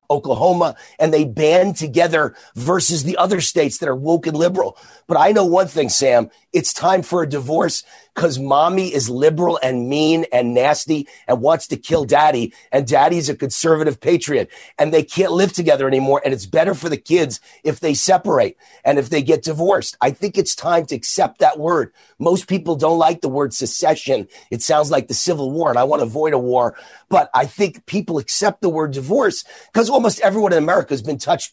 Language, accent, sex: English, American, male